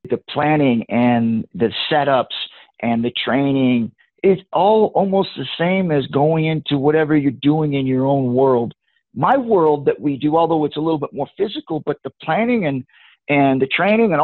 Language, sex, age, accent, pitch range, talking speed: English, male, 50-69, American, 150-210 Hz, 180 wpm